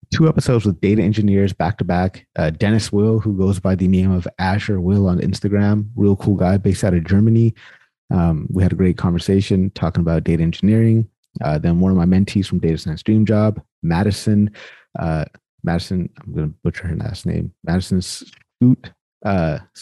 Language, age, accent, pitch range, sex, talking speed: English, 30-49, American, 90-105 Hz, male, 185 wpm